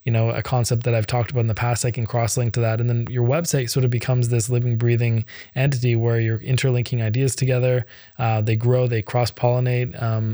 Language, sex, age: English, male, 20-39